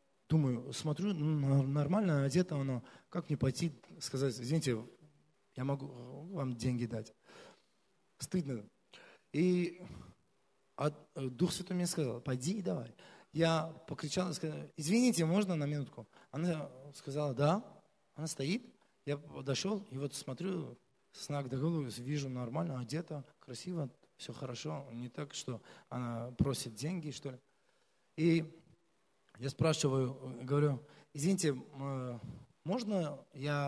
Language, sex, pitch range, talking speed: Russian, male, 130-175 Hz, 120 wpm